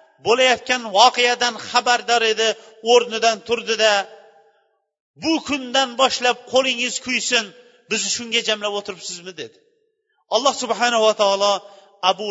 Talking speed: 105 wpm